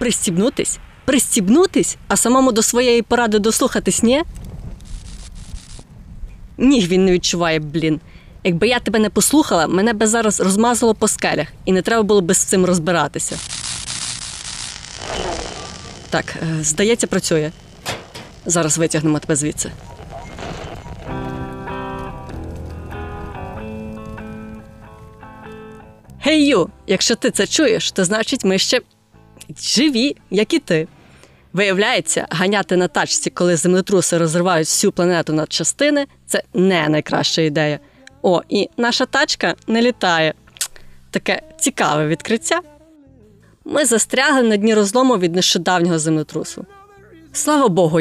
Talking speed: 110 wpm